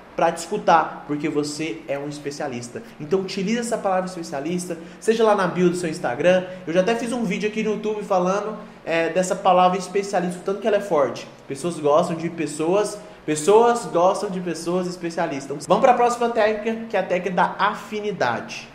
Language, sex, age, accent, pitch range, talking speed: Portuguese, male, 20-39, Brazilian, 170-220 Hz, 185 wpm